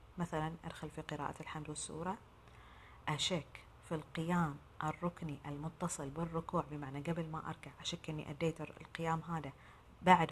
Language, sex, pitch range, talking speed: Arabic, female, 155-180 Hz, 130 wpm